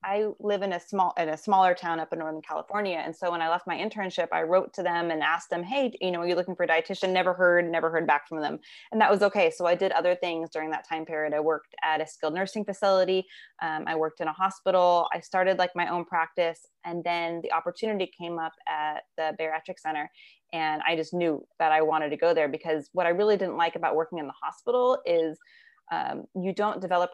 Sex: female